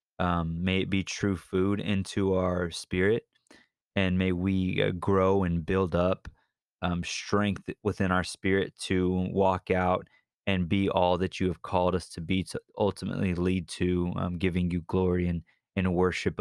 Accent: American